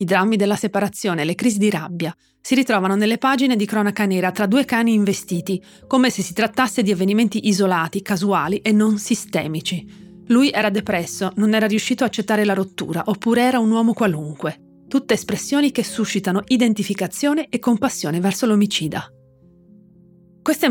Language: Italian